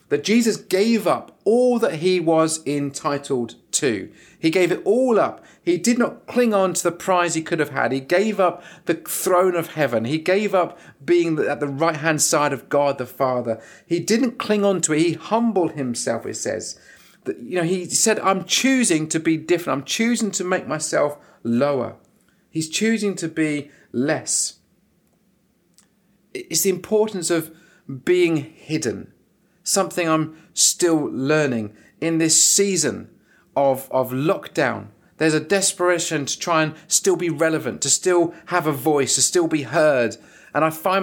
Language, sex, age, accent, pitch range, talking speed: English, male, 40-59, British, 150-190 Hz, 170 wpm